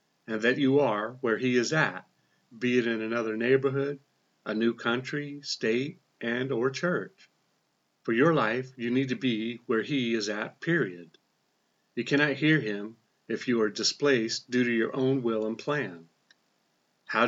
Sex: male